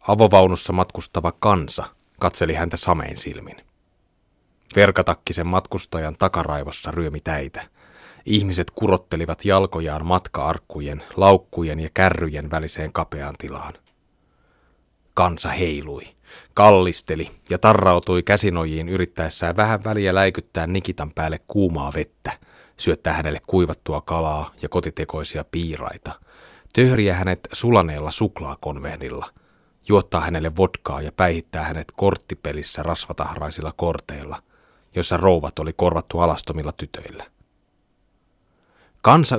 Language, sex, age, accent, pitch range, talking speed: Finnish, male, 30-49, native, 80-95 Hz, 95 wpm